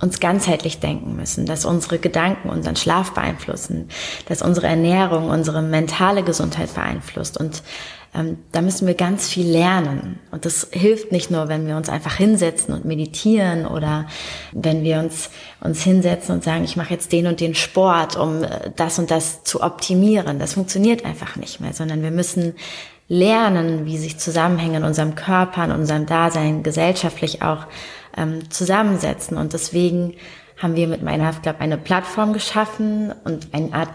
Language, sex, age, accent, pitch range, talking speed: German, female, 20-39, German, 160-185 Hz, 165 wpm